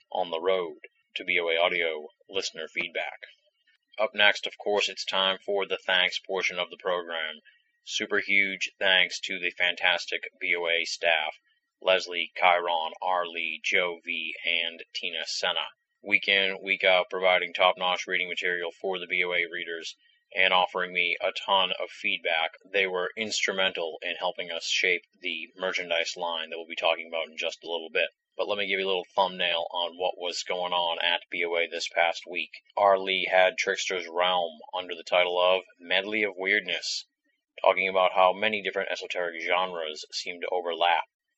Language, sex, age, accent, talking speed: English, male, 30-49, American, 170 wpm